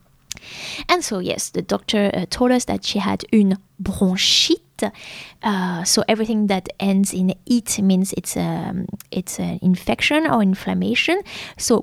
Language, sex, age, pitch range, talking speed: English, female, 20-39, 185-225 Hz, 145 wpm